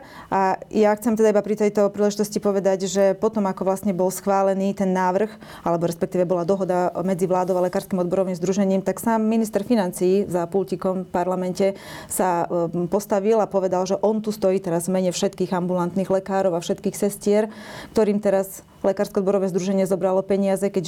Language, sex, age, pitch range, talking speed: Slovak, female, 30-49, 180-200 Hz, 170 wpm